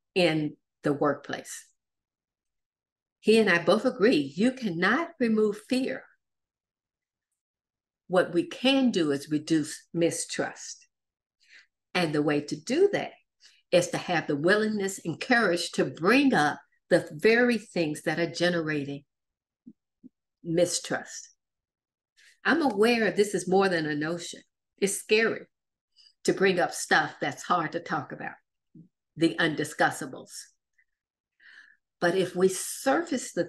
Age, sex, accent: 50-69, female, American